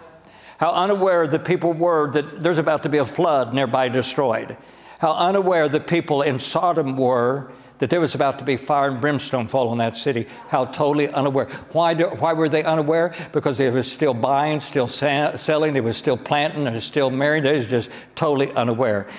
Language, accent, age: English, American, 60-79